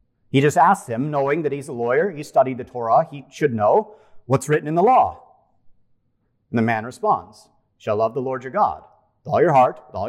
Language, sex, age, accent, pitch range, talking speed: English, male, 40-59, American, 115-140 Hz, 220 wpm